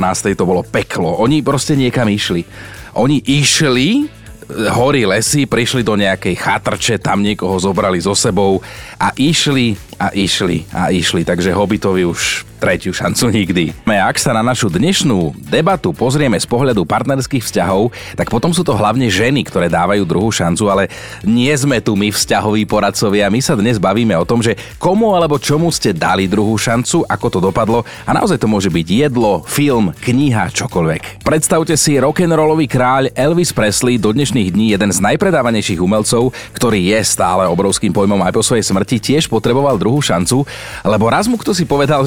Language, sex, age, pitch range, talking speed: Slovak, male, 30-49, 105-145 Hz, 170 wpm